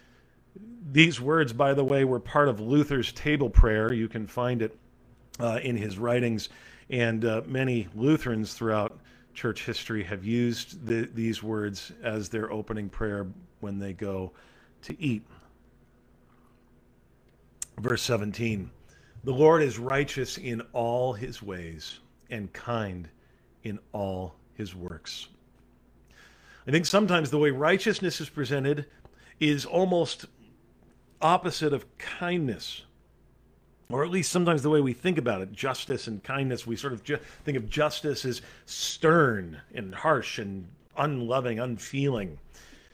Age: 40-59